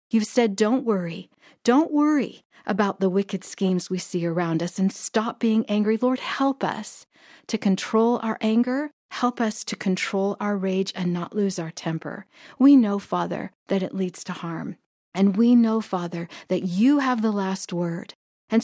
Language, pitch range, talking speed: English, 180-230 Hz, 175 wpm